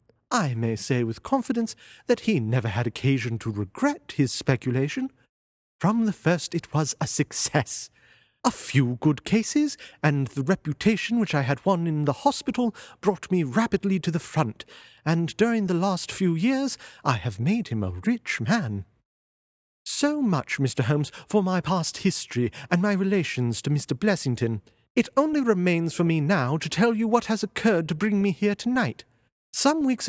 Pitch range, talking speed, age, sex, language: 140-230 Hz, 175 wpm, 40-59, male, English